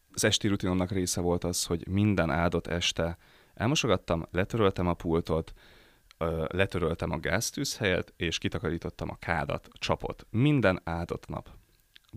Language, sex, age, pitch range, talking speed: Hungarian, male, 30-49, 85-105 Hz, 125 wpm